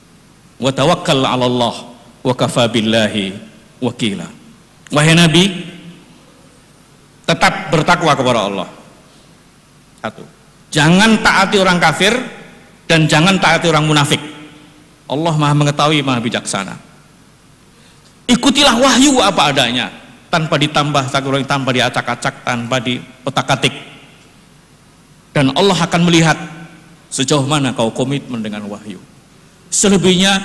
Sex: male